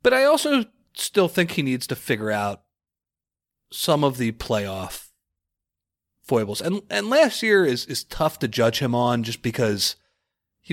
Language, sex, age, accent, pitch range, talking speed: English, male, 30-49, American, 120-195 Hz, 160 wpm